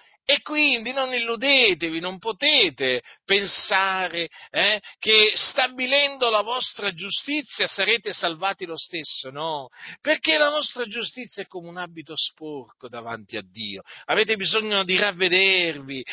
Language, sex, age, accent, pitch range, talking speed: Italian, male, 50-69, native, 145-225 Hz, 125 wpm